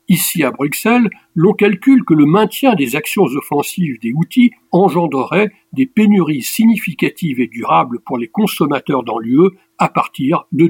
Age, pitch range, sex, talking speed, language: 60-79, 140-205 Hz, male, 150 wpm, French